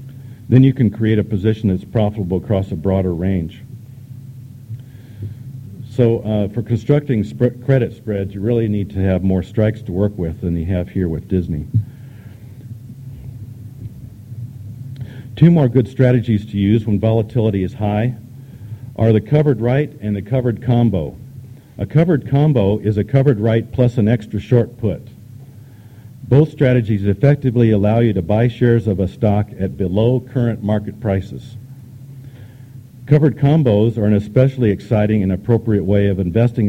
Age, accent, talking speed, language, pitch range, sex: 50-69, American, 150 wpm, English, 105-125 Hz, male